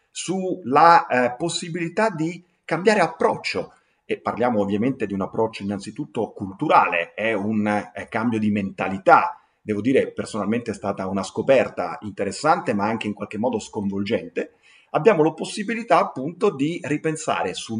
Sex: male